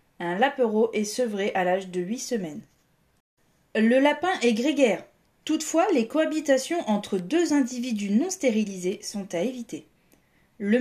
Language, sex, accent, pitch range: French, female, French, 200-260 Hz